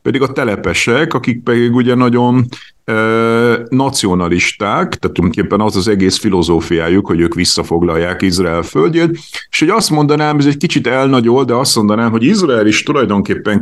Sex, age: male, 50-69